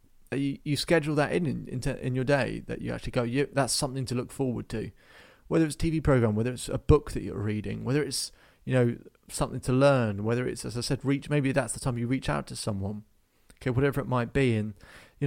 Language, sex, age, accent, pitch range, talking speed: English, male, 30-49, British, 110-140 Hz, 235 wpm